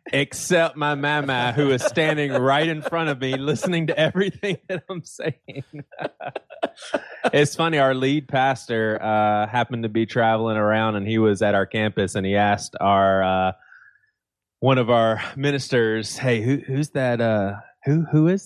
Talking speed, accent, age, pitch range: 165 wpm, American, 20-39, 100-135 Hz